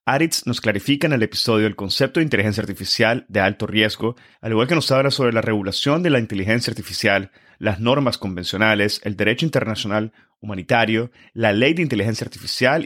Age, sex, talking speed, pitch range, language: 30-49, male, 175 wpm, 105-125 Hz, Spanish